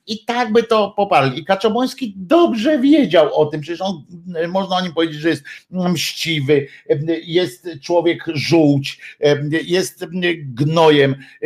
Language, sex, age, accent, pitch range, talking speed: Polish, male, 50-69, native, 135-175 Hz, 130 wpm